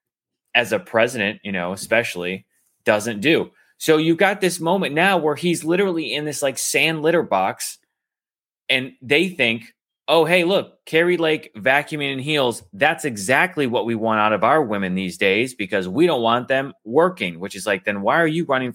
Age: 30-49